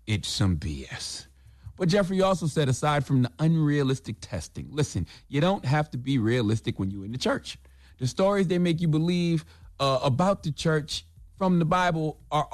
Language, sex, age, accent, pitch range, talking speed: English, male, 30-49, American, 115-165 Hz, 180 wpm